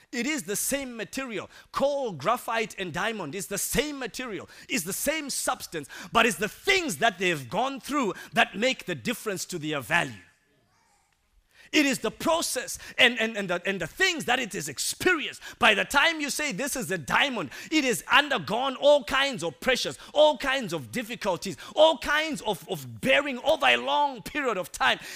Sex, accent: male, South African